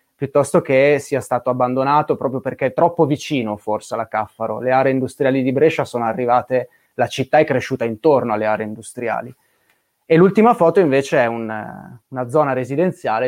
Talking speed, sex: 165 wpm, male